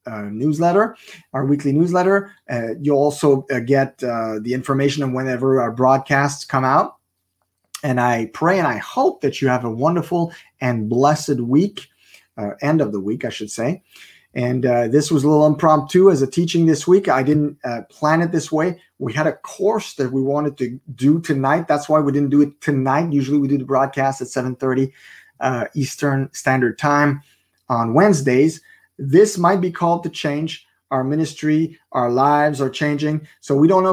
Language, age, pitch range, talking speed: English, 30-49, 120-150 Hz, 185 wpm